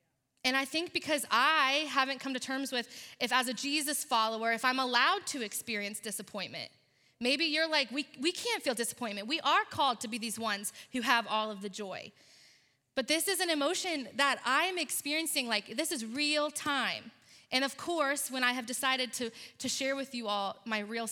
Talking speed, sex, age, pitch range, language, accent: 200 wpm, female, 20-39, 220-275 Hz, English, American